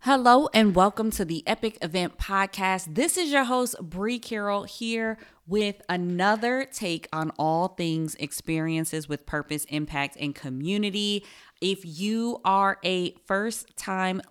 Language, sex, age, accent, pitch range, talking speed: English, female, 20-39, American, 155-200 Hz, 135 wpm